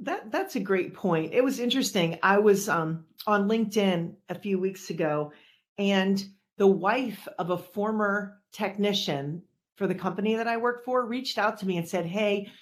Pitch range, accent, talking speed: 175-215 Hz, American, 180 wpm